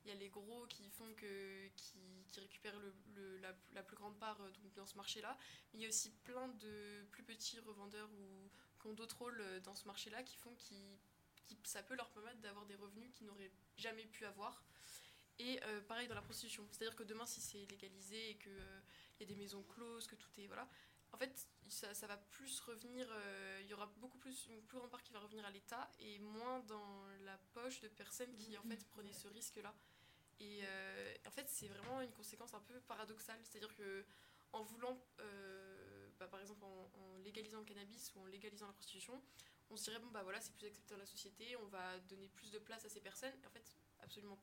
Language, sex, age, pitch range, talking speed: French, female, 20-39, 200-230 Hz, 225 wpm